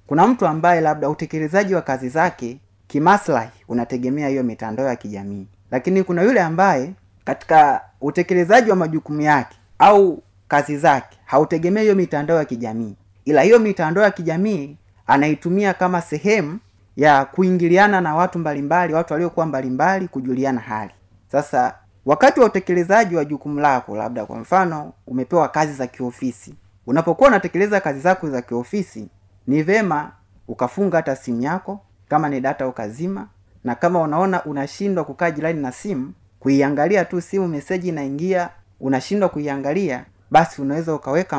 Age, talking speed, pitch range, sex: 30-49, 145 wpm, 125-180 Hz, male